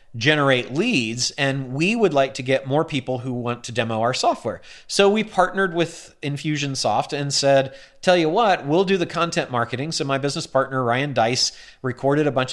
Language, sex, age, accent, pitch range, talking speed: English, male, 40-59, American, 125-155 Hz, 190 wpm